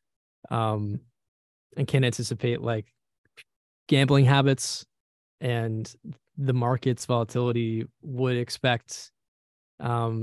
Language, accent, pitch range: English, American, 115-125 Hz